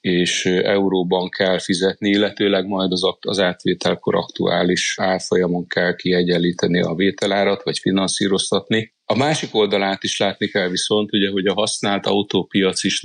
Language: Hungarian